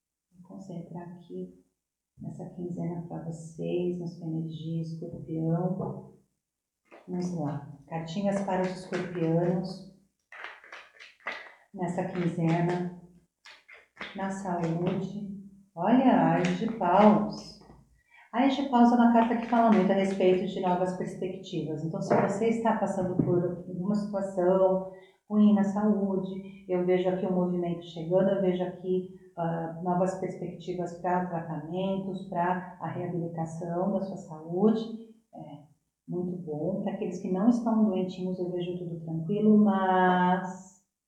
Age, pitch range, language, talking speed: 40-59, 170-195 Hz, Portuguese, 120 wpm